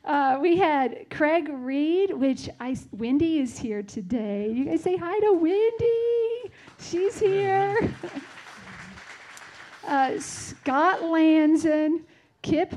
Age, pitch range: 50-69, 245-320 Hz